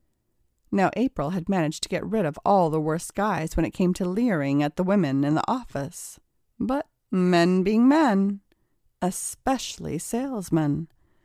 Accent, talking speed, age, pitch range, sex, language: American, 155 wpm, 30-49, 165-235 Hz, female, English